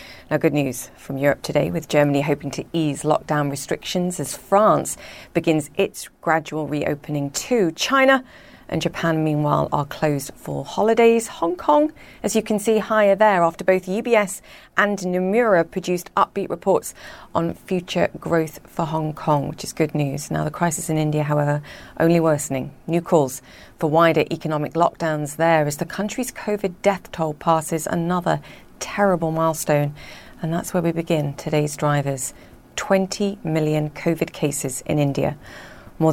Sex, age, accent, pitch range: female, 40-59, British, 150-180 Hz